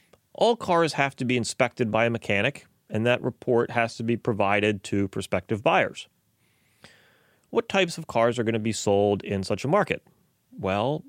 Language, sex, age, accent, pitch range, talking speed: English, male, 30-49, American, 110-145 Hz, 180 wpm